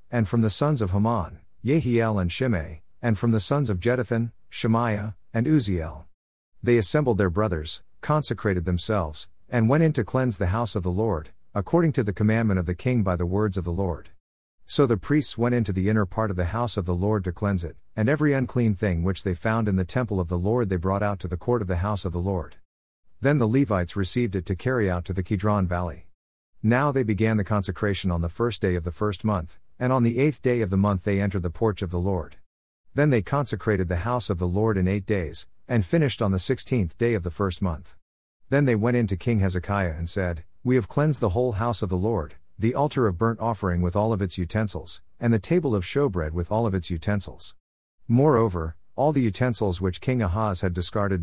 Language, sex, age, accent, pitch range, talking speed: English, male, 50-69, American, 90-115 Hz, 230 wpm